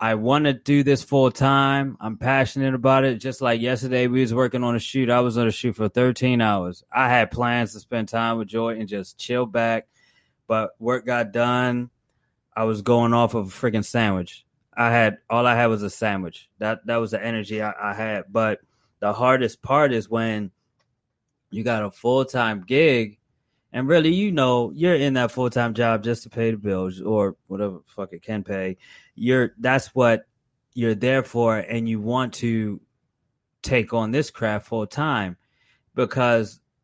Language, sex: English, male